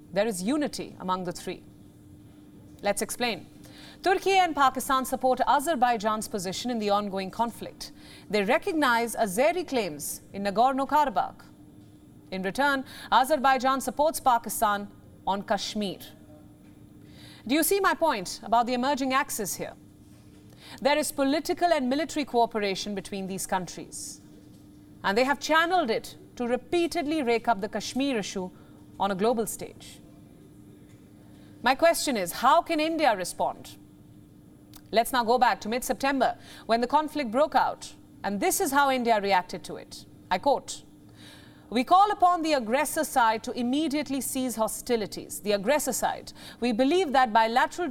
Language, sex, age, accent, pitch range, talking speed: English, female, 30-49, Indian, 205-285 Hz, 140 wpm